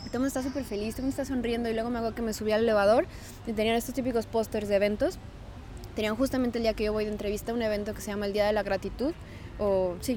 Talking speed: 275 wpm